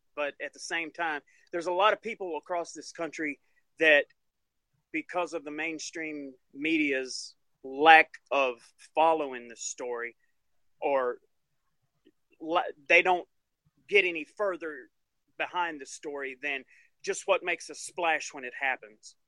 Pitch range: 140-175 Hz